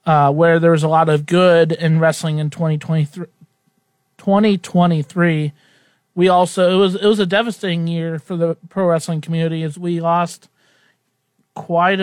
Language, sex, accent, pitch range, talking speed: English, male, American, 160-180 Hz, 160 wpm